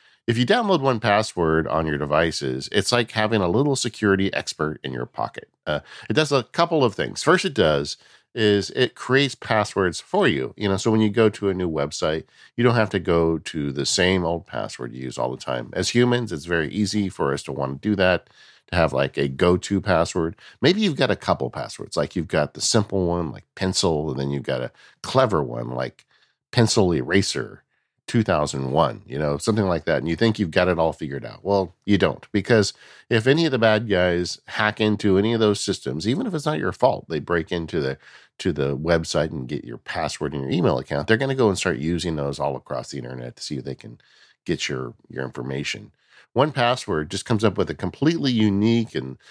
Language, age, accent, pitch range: English, 50-69, American, 80-110 Hz